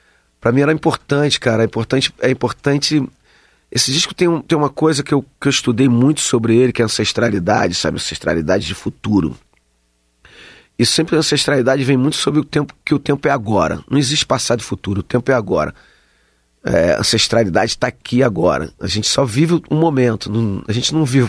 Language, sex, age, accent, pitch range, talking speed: Portuguese, male, 40-59, Brazilian, 105-140 Hz, 200 wpm